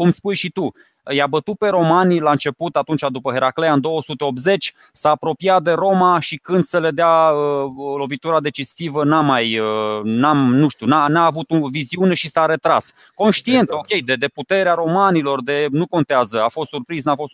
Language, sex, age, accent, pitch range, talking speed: Romanian, male, 20-39, native, 130-170 Hz, 190 wpm